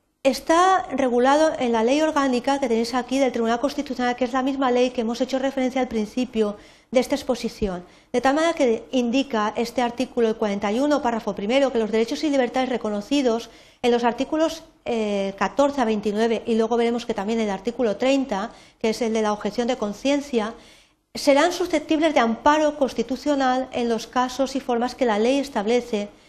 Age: 40-59